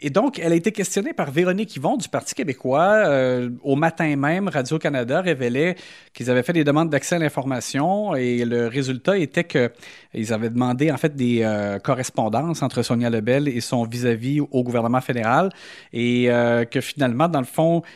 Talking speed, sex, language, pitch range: 180 wpm, male, French, 125-160 Hz